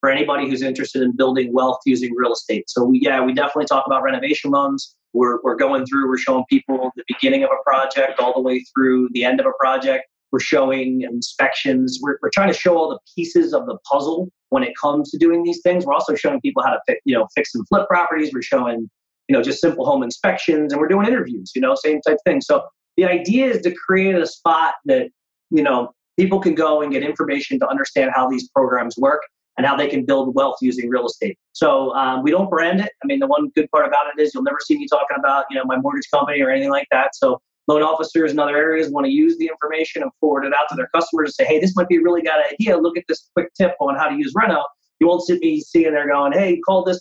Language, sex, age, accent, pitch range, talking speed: English, male, 30-49, American, 135-180 Hz, 255 wpm